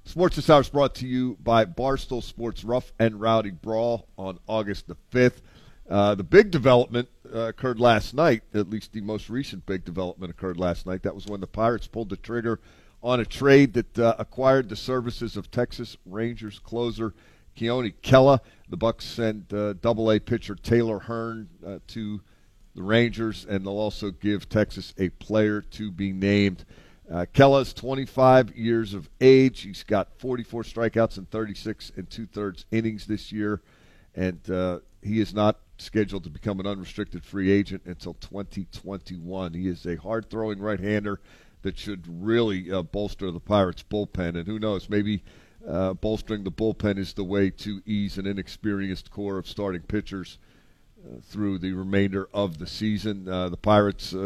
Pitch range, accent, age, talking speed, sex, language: 95-115 Hz, American, 50-69, 170 wpm, male, English